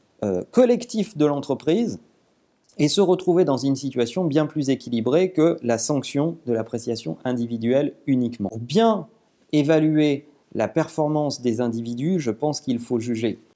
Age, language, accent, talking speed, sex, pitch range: 40-59, French, French, 135 wpm, male, 120-180 Hz